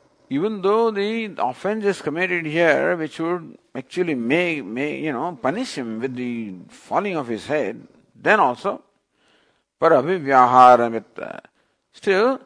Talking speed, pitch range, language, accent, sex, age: 120 wpm, 135-200 Hz, English, Indian, male, 50-69